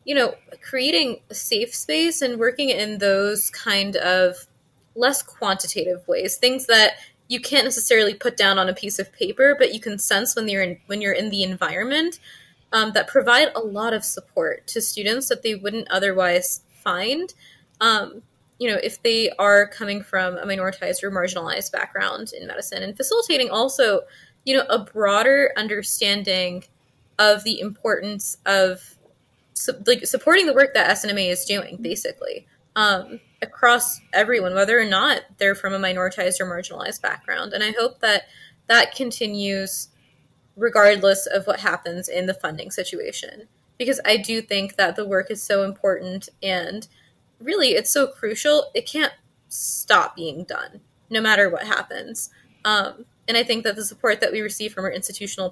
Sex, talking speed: female, 165 wpm